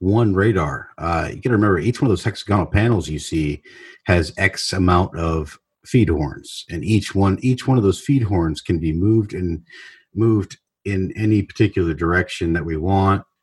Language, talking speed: English, 185 wpm